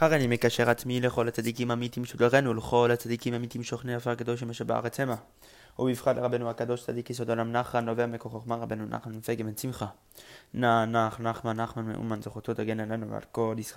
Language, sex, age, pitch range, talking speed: English, male, 20-39, 105-120 Hz, 105 wpm